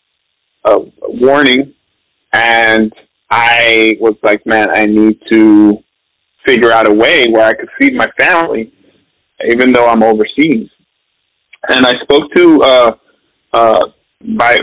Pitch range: 110-155 Hz